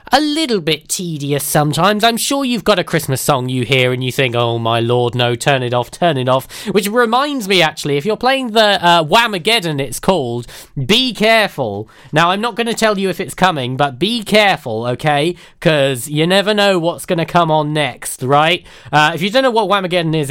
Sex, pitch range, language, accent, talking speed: male, 130-200 Hz, English, British, 220 wpm